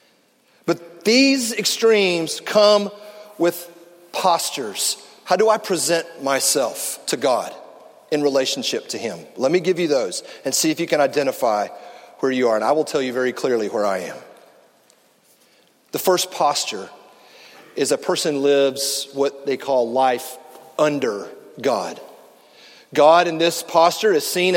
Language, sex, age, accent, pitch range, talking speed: English, male, 40-59, American, 170-230 Hz, 145 wpm